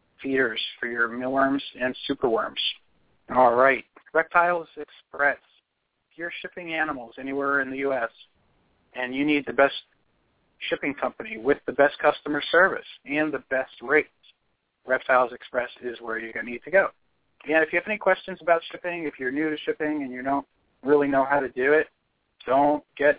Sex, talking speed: male, 175 wpm